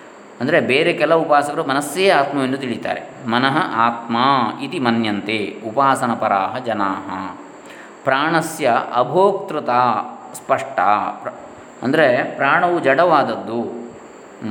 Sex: male